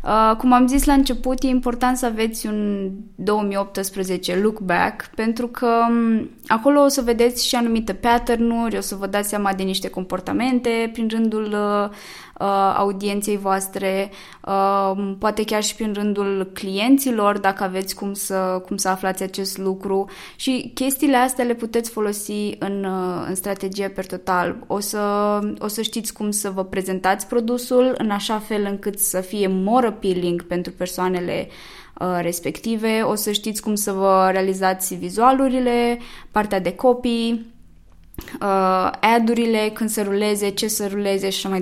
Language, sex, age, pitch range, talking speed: Romanian, female, 20-39, 195-235 Hz, 150 wpm